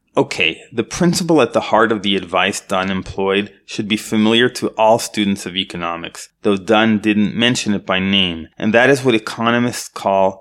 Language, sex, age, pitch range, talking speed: English, male, 30-49, 95-115 Hz, 185 wpm